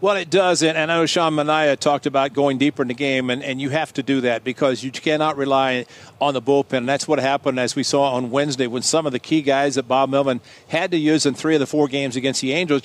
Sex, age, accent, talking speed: male, 50-69, American, 270 wpm